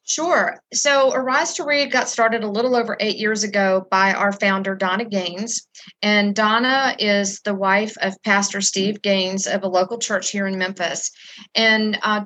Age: 40-59